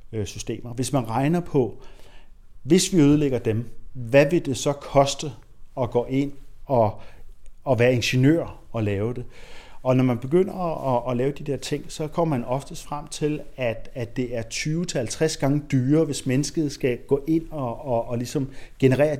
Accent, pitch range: native, 115-145 Hz